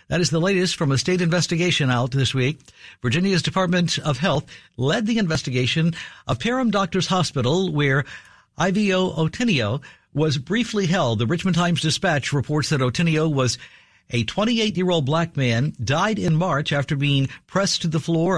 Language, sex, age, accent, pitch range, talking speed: English, male, 60-79, American, 130-180 Hz, 160 wpm